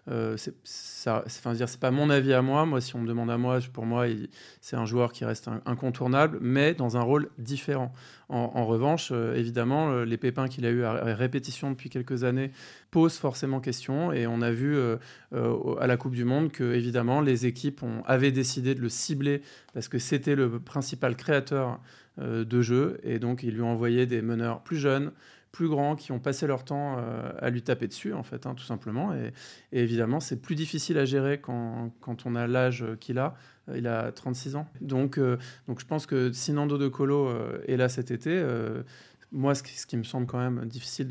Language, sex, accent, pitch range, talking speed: French, male, French, 120-140 Hz, 220 wpm